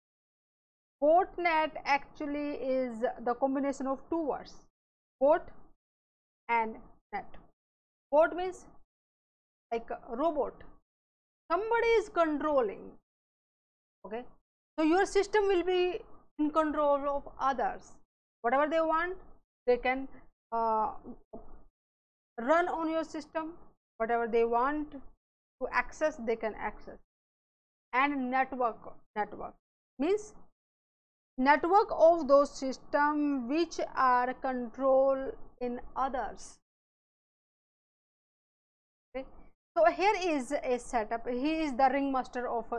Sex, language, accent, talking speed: female, English, Indian, 100 wpm